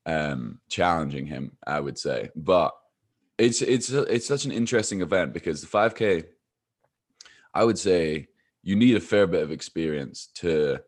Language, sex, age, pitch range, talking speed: English, male, 20-39, 80-90 Hz, 155 wpm